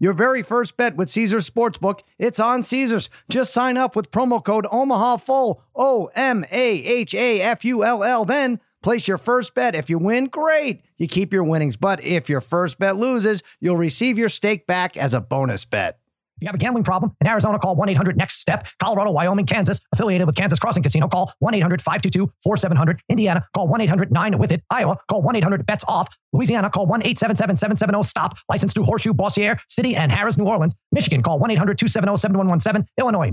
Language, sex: English, male